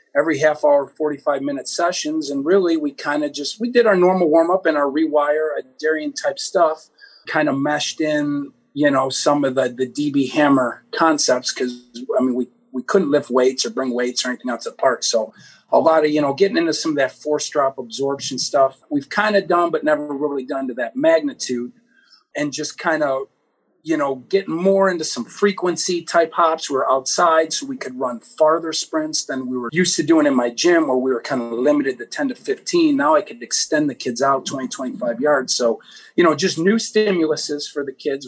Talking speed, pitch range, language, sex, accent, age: 215 wpm, 140-200 Hz, English, male, American, 40-59